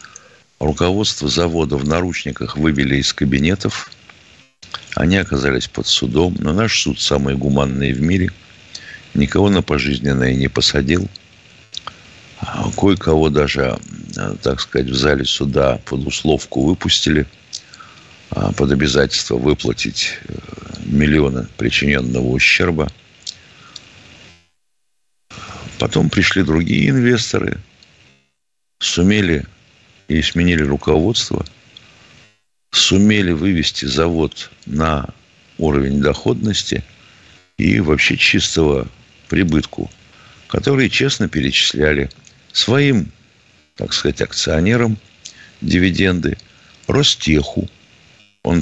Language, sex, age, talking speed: Russian, male, 60-79, 85 wpm